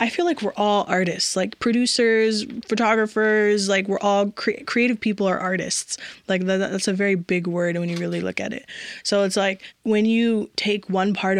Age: 20-39